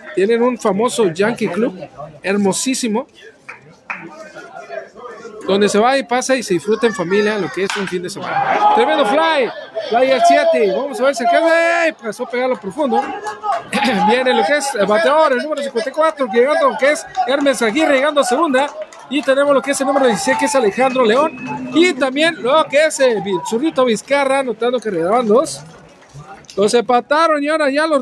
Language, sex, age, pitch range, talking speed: Spanish, male, 40-59, 215-295 Hz, 180 wpm